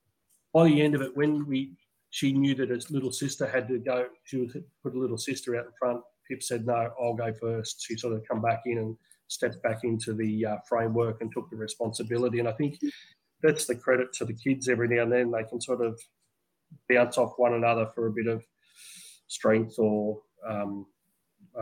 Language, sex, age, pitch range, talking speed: English, male, 30-49, 115-125 Hz, 215 wpm